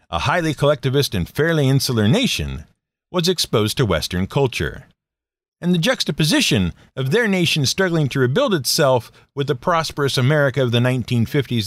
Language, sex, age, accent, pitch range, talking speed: English, male, 50-69, American, 115-175 Hz, 150 wpm